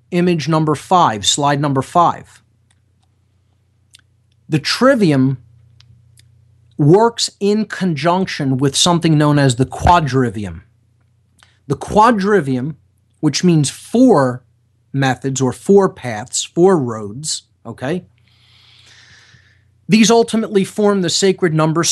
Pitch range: 110-155 Hz